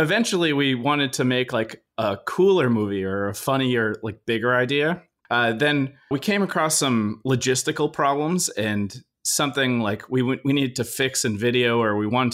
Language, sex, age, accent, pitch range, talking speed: English, male, 30-49, American, 110-140 Hz, 175 wpm